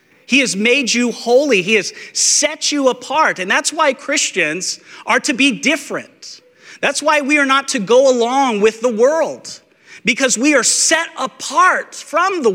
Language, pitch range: English, 155-245 Hz